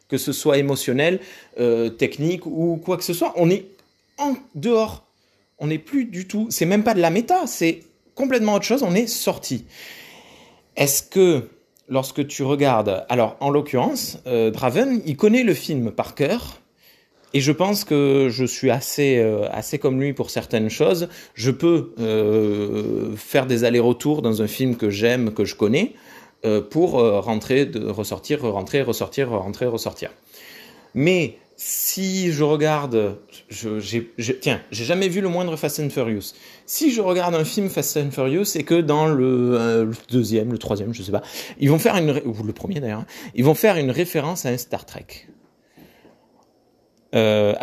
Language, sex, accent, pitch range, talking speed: French, male, French, 115-170 Hz, 180 wpm